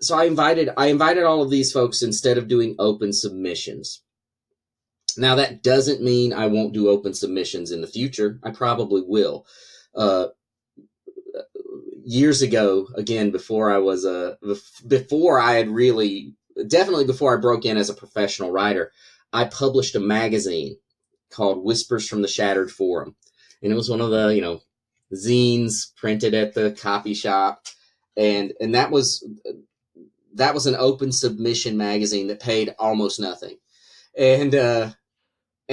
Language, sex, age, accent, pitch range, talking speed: English, male, 30-49, American, 105-135 Hz, 155 wpm